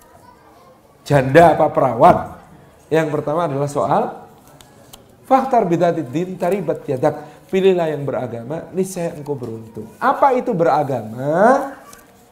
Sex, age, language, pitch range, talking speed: male, 40-59, Indonesian, 145-195 Hz, 95 wpm